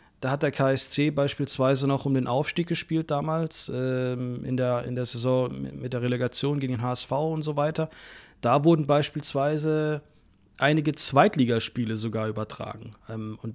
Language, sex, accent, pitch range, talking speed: German, male, German, 115-135 Hz, 150 wpm